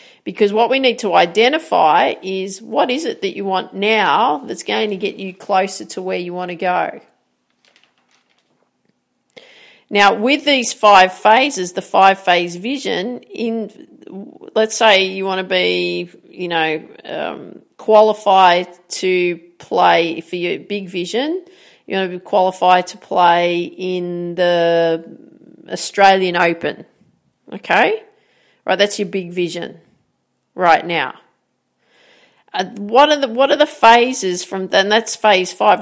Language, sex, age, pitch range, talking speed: English, female, 40-59, 180-220 Hz, 140 wpm